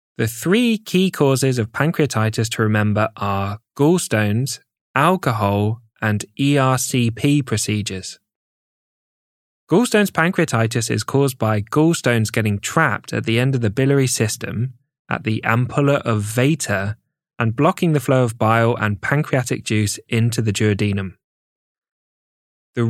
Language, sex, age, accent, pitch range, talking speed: English, male, 10-29, British, 110-135 Hz, 125 wpm